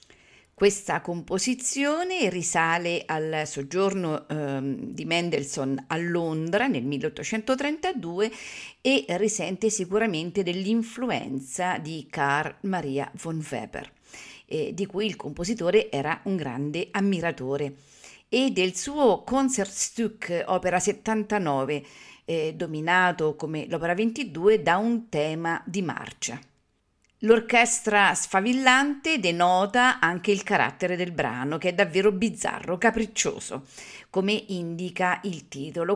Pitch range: 165-220 Hz